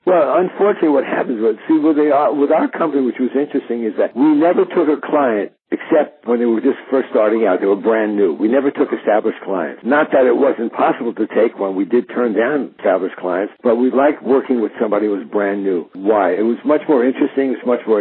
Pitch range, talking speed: 110-135 Hz, 235 wpm